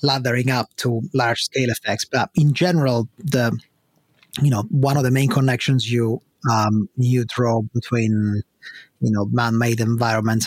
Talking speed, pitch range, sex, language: 150 wpm, 110-130 Hz, male, English